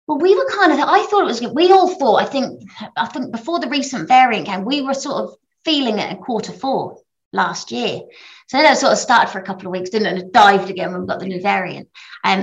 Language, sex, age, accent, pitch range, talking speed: English, female, 30-49, British, 200-250 Hz, 270 wpm